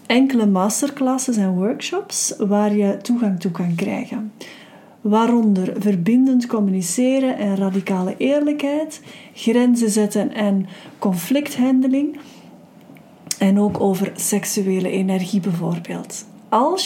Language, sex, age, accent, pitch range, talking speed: Dutch, female, 40-59, Dutch, 195-240 Hz, 95 wpm